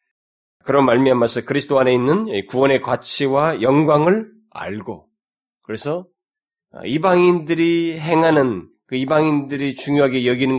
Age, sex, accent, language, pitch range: 30-49, male, native, Korean, 120-180 Hz